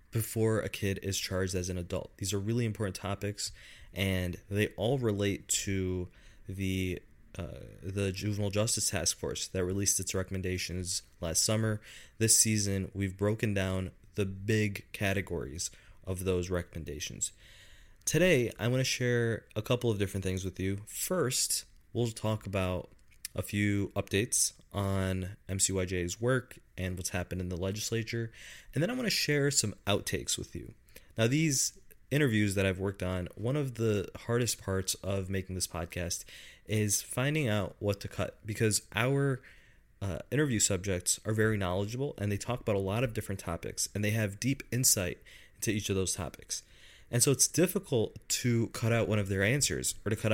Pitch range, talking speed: 95-115 Hz, 170 wpm